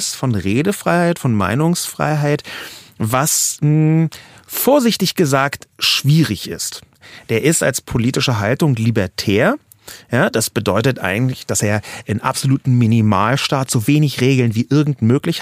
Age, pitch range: 40-59, 120-170 Hz